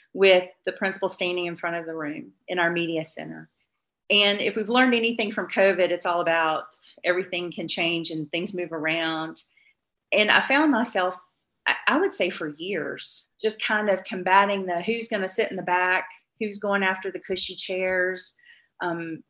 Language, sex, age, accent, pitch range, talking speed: English, female, 40-59, American, 170-200 Hz, 180 wpm